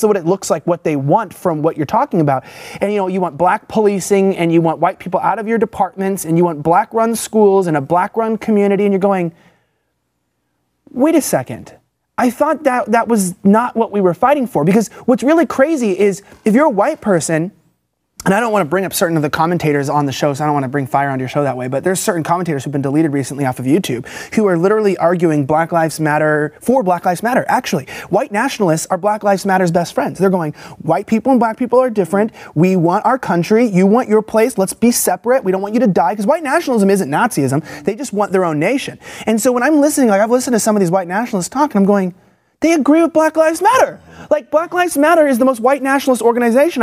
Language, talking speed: English, 250 wpm